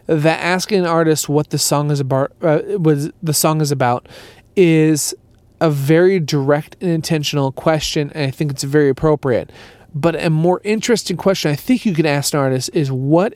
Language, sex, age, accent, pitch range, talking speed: English, male, 30-49, American, 145-185 Hz, 190 wpm